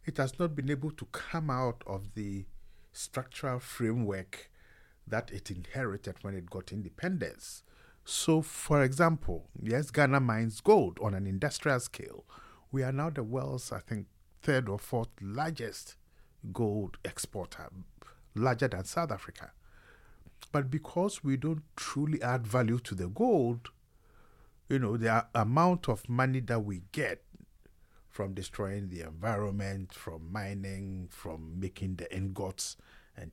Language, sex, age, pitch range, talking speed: Danish, male, 50-69, 95-130 Hz, 140 wpm